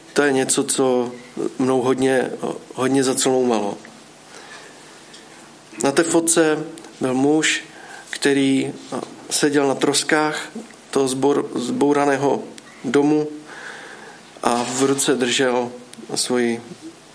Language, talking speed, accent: Czech, 90 wpm, native